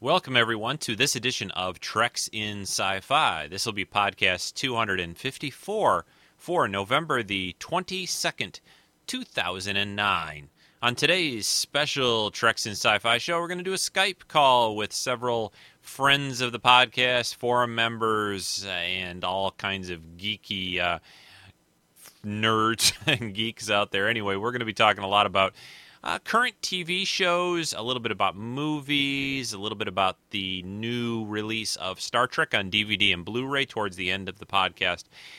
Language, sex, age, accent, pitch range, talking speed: English, male, 30-49, American, 100-130 Hz, 155 wpm